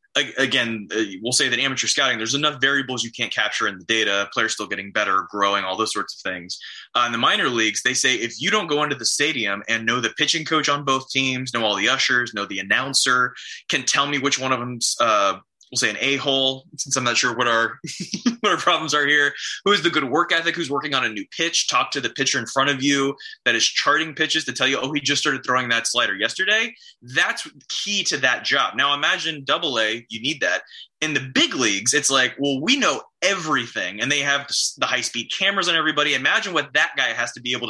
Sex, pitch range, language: male, 115-150 Hz, English